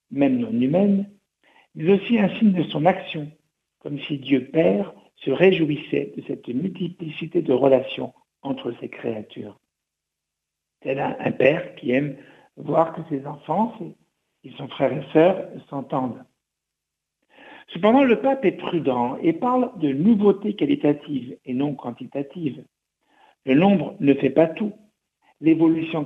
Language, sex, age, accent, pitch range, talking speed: French, male, 60-79, French, 135-190 Hz, 135 wpm